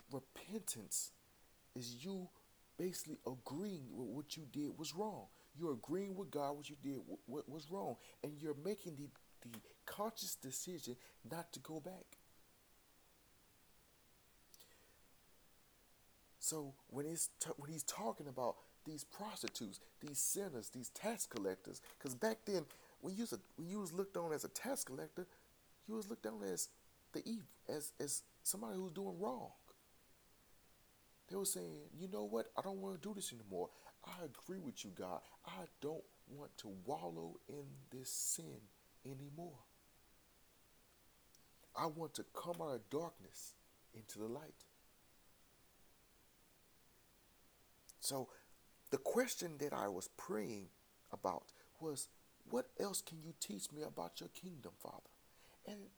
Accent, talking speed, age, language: American, 140 wpm, 40-59, English